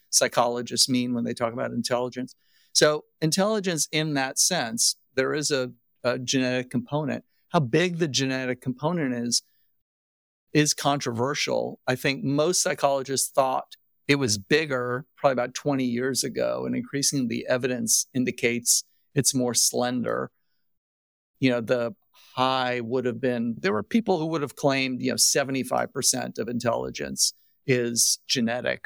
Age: 50-69